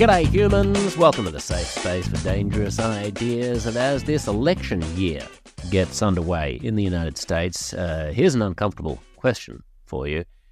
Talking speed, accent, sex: 160 wpm, Australian, male